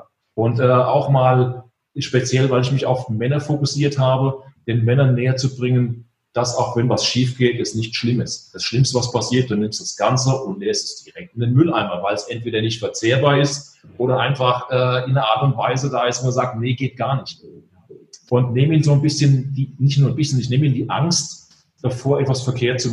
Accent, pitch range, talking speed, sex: German, 125-145 Hz, 220 wpm, male